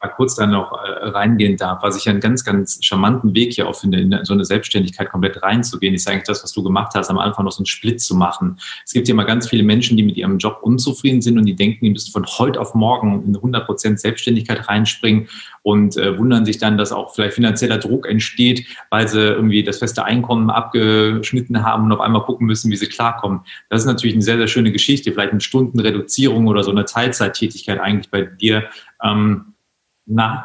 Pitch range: 100-115 Hz